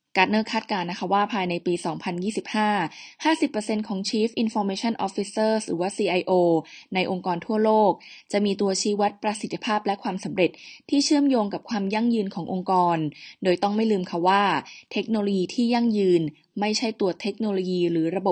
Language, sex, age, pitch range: Thai, female, 20-39, 185-220 Hz